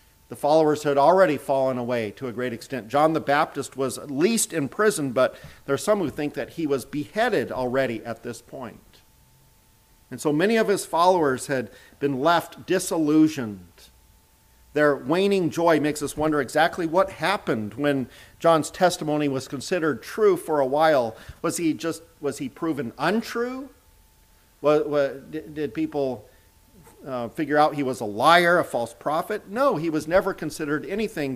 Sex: male